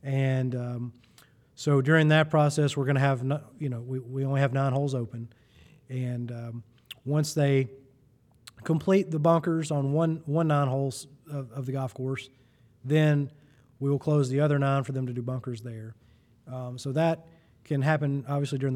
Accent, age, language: American, 30-49, English